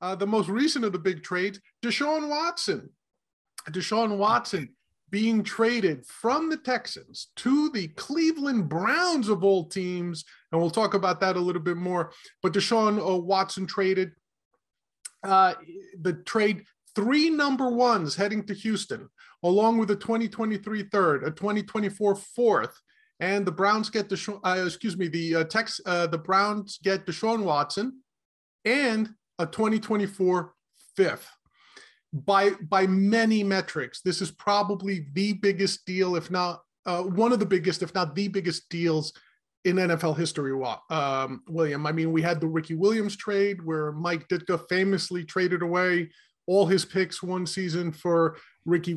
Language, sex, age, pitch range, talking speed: English, male, 30-49, 175-215 Hz, 150 wpm